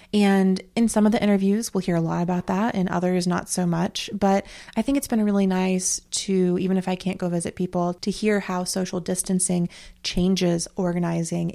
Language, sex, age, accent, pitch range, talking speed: English, female, 20-39, American, 175-205 Hz, 205 wpm